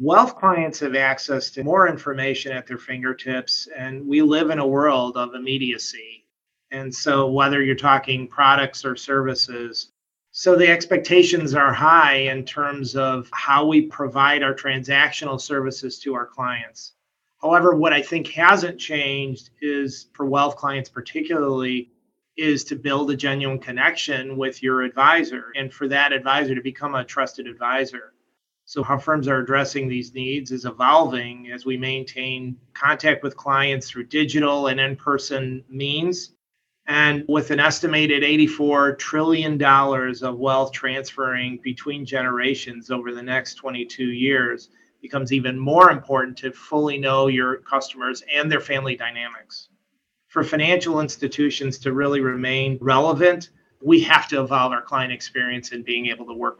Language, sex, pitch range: English, male, 130-145 Hz